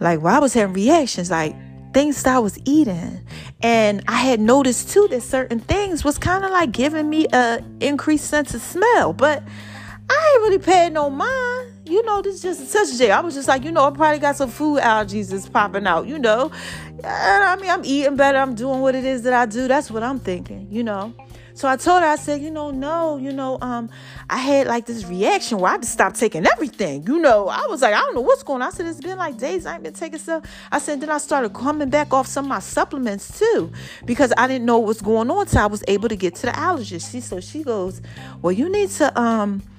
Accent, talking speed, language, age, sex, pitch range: American, 250 wpm, English, 30-49, female, 195-290 Hz